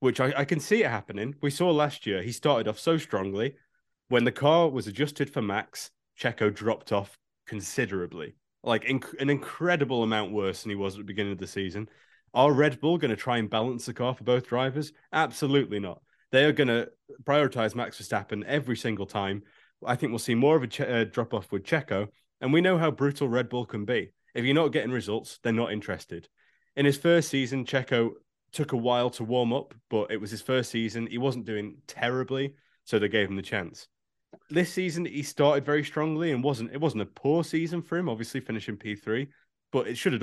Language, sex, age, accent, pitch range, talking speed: English, male, 20-39, British, 110-145 Hz, 215 wpm